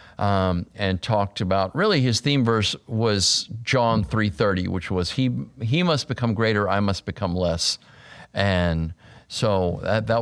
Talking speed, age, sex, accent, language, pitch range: 160 wpm, 50-69, male, American, English, 100-130 Hz